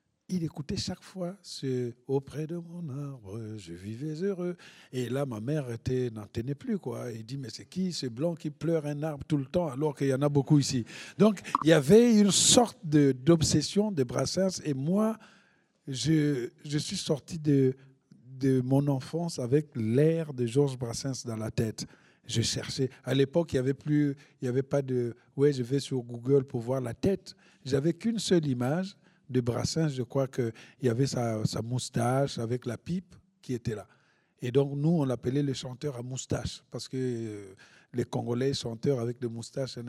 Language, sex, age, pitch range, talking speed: French, male, 50-69, 125-160 Hz, 195 wpm